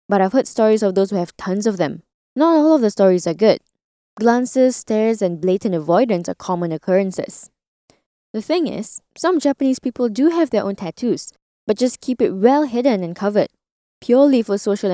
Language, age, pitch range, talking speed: English, 10-29, 190-255 Hz, 195 wpm